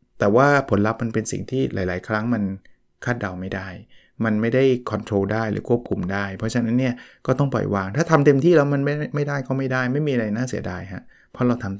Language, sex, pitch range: Thai, male, 105-130 Hz